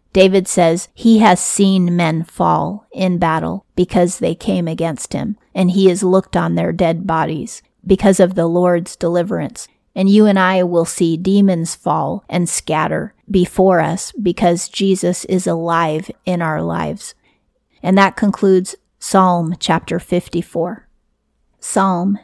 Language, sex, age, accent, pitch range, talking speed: English, female, 40-59, American, 170-195 Hz, 145 wpm